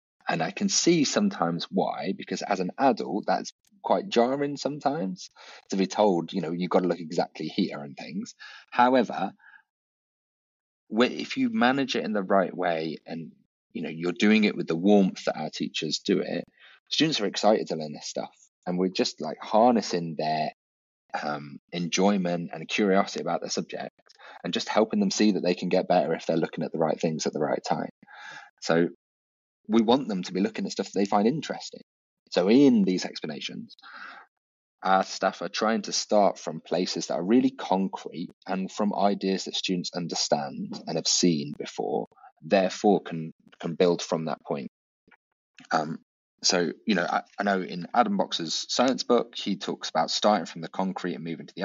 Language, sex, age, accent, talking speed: English, male, 30-49, British, 185 wpm